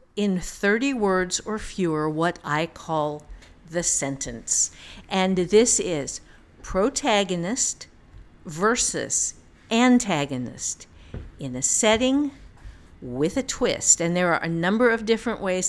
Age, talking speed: 50-69, 115 wpm